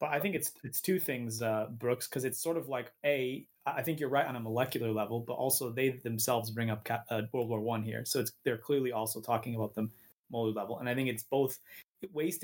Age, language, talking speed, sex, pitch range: 20-39, English, 235 wpm, male, 115-135 Hz